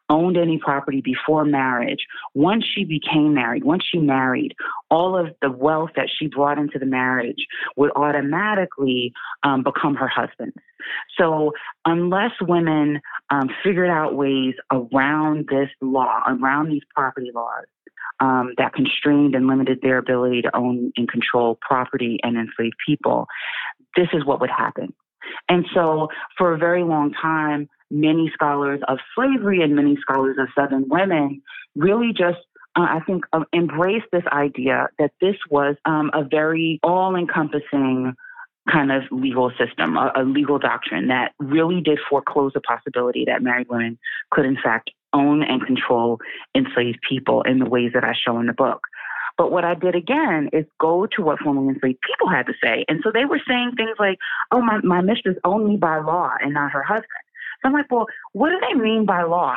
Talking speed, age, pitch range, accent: 175 wpm, 30-49, 135-180 Hz, American